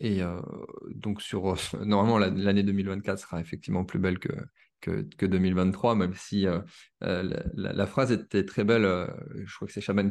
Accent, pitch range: French, 95-115 Hz